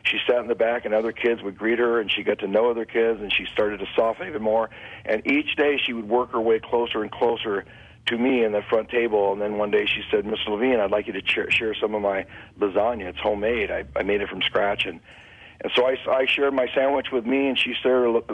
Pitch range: 105-120 Hz